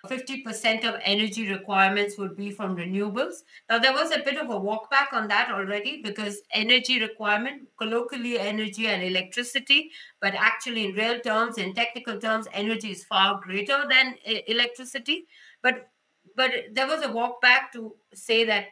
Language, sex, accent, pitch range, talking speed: English, female, Indian, 210-265 Hz, 165 wpm